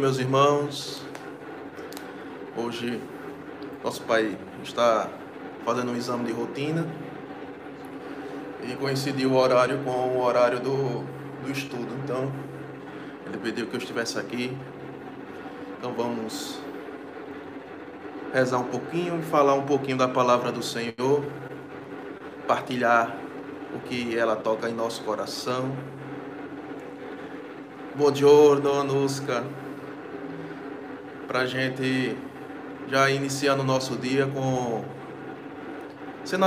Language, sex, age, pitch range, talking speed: Portuguese, male, 20-39, 125-140 Hz, 105 wpm